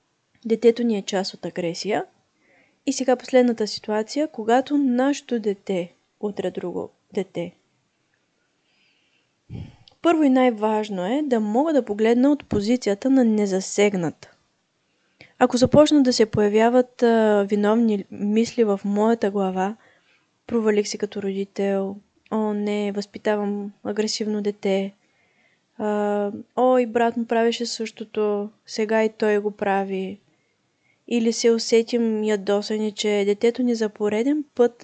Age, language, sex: 20-39, Bulgarian, female